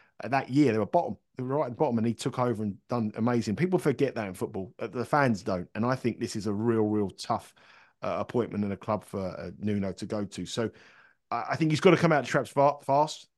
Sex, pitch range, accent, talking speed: male, 115-140 Hz, British, 265 wpm